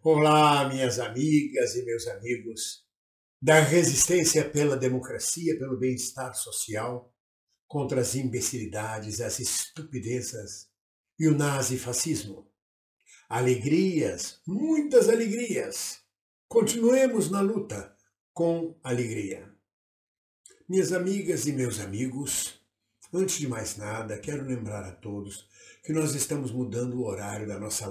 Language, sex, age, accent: Portuguese, male, 60-79, Brazilian